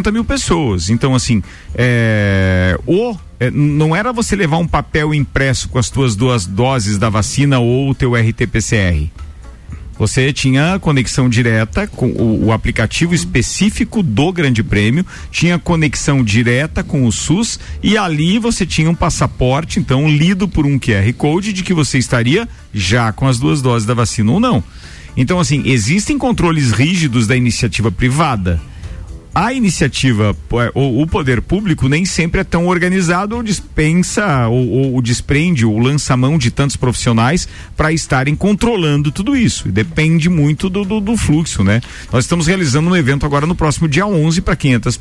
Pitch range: 120-170 Hz